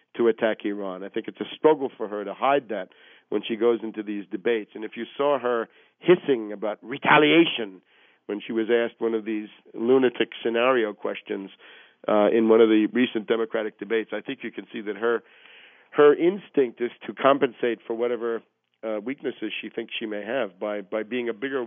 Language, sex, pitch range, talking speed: English, male, 110-125 Hz, 195 wpm